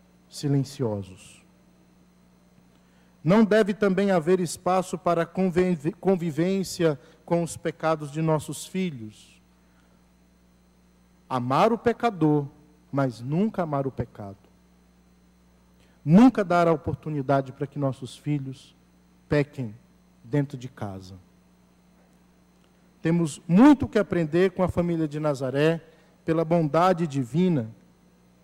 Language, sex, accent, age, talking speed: Portuguese, male, Brazilian, 50-69, 100 wpm